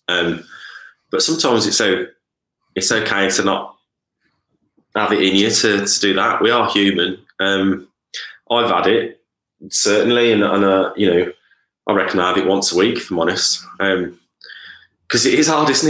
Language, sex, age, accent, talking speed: English, male, 20-39, British, 175 wpm